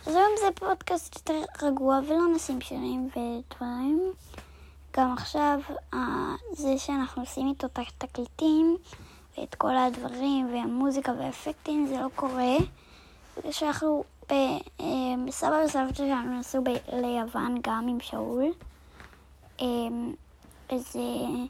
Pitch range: 255-305 Hz